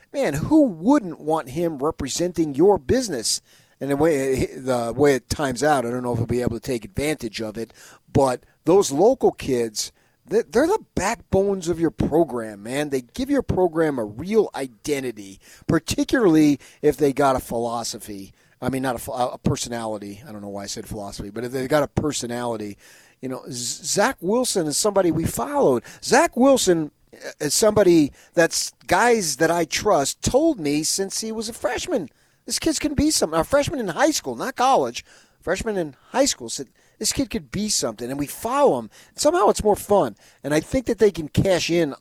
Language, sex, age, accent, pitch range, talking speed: English, male, 40-59, American, 120-185 Hz, 190 wpm